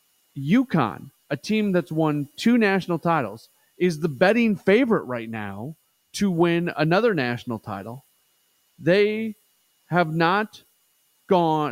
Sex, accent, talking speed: male, American, 120 wpm